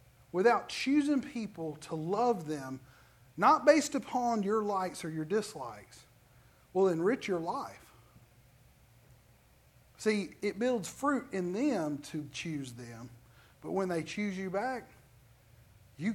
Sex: male